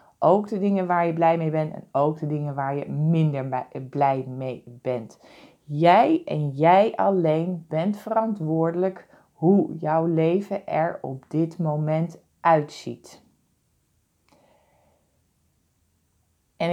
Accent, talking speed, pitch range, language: Dutch, 120 wpm, 145-190 Hz, Dutch